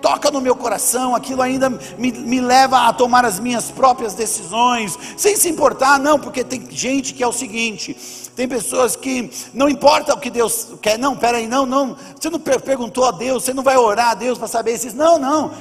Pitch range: 240-290 Hz